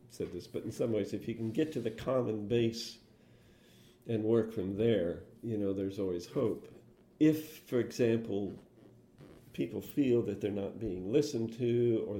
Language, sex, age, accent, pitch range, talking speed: English, male, 50-69, American, 95-115 Hz, 170 wpm